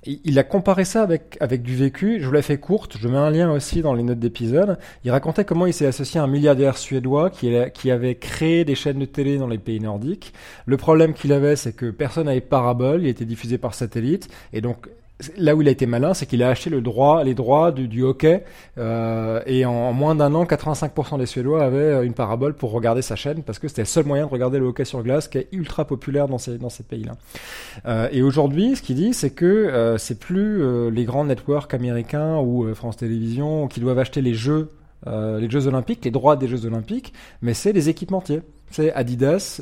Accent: French